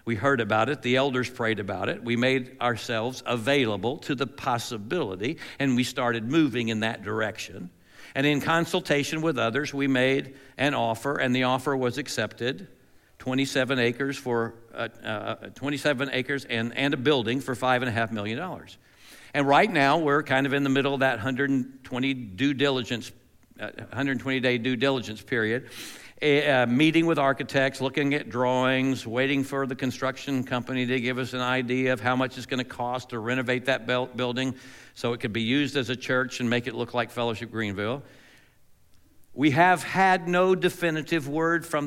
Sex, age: male, 60-79